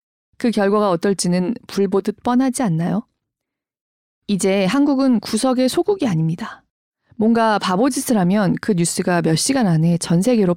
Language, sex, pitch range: Korean, female, 175-245 Hz